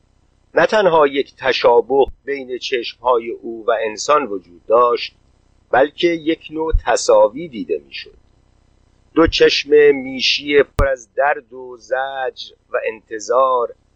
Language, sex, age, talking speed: Persian, male, 50-69, 120 wpm